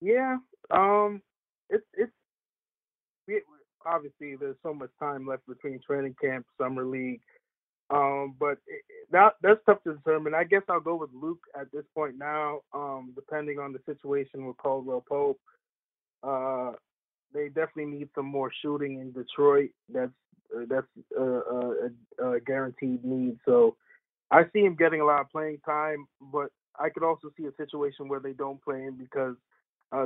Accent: American